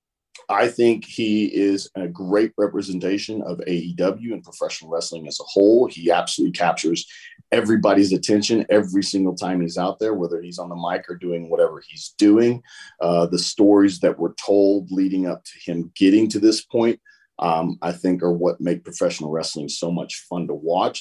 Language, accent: English, American